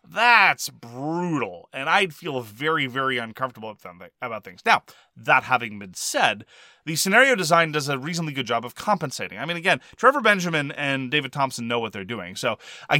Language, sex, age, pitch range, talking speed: English, male, 30-49, 120-165 Hz, 190 wpm